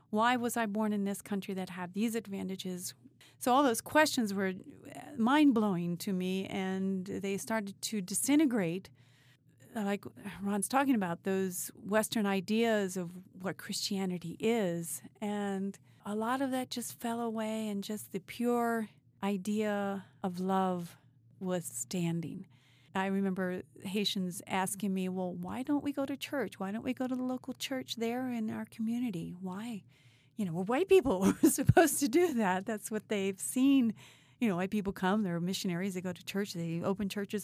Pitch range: 185-230 Hz